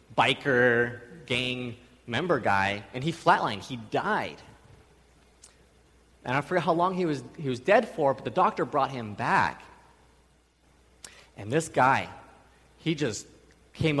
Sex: male